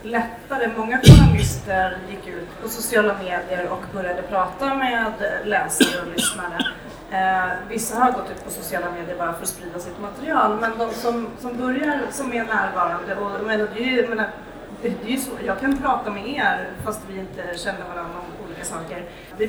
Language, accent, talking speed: Swedish, native, 175 wpm